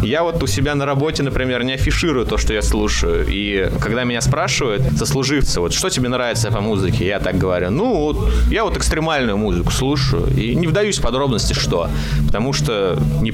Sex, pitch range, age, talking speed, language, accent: male, 95-140 Hz, 20-39, 185 wpm, Russian, native